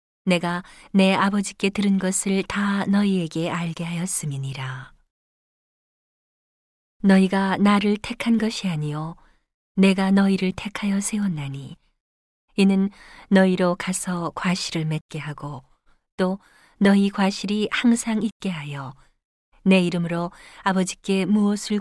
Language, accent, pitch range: Korean, native, 165-200 Hz